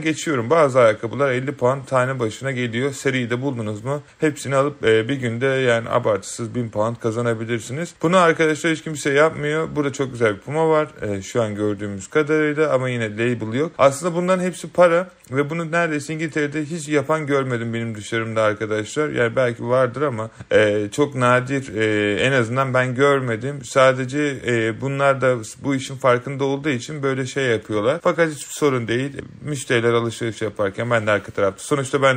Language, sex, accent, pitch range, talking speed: Turkish, male, native, 120-150 Hz, 175 wpm